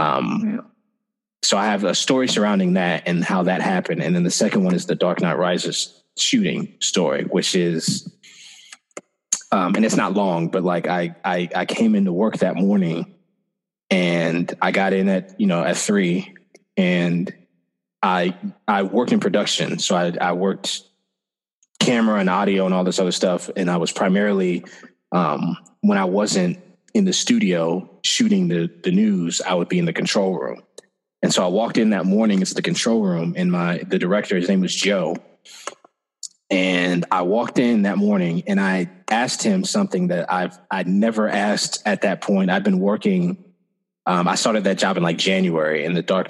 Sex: male